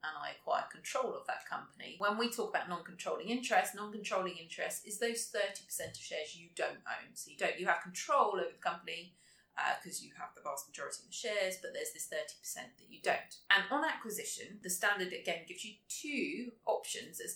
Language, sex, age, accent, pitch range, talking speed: English, female, 30-49, British, 175-235 Hz, 205 wpm